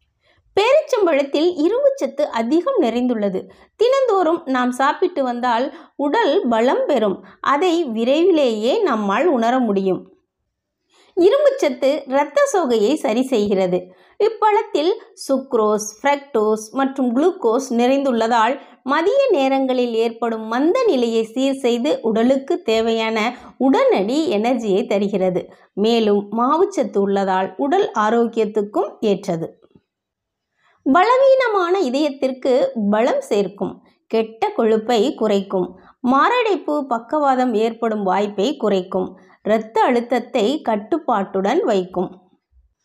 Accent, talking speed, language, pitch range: native, 85 wpm, Tamil, 220-290 Hz